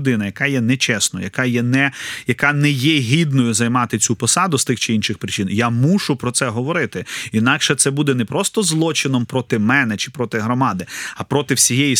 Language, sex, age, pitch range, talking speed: Ukrainian, male, 30-49, 120-145 Hz, 185 wpm